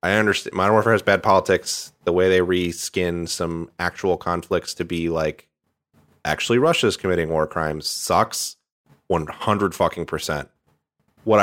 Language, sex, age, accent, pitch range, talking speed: English, male, 30-49, American, 80-95 Hz, 140 wpm